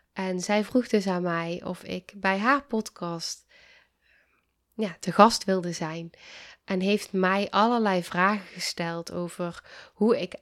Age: 10-29